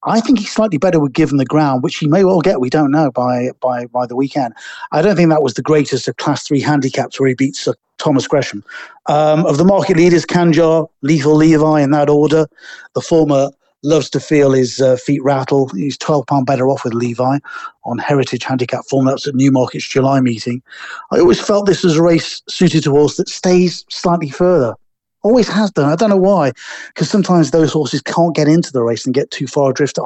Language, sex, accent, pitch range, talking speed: English, male, British, 135-175 Hz, 220 wpm